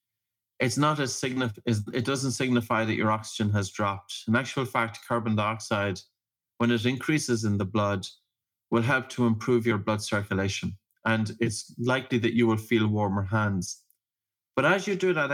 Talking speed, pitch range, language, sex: 170 wpm, 105-120 Hz, English, male